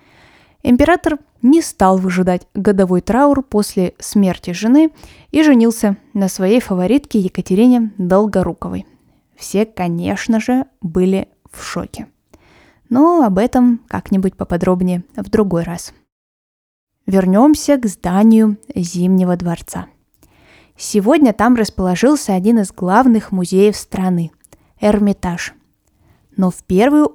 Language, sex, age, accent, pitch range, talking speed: Russian, female, 20-39, native, 185-245 Hz, 105 wpm